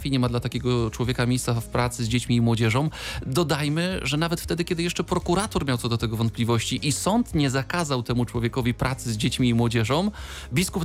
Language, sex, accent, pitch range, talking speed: Polish, male, native, 125-170 Hz, 205 wpm